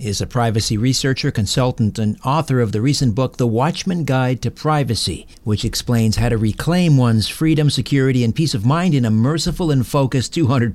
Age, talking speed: 60-79, 190 wpm